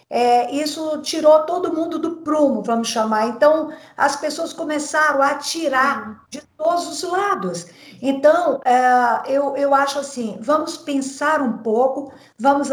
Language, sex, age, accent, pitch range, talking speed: Portuguese, female, 50-69, Brazilian, 235-300 Hz, 130 wpm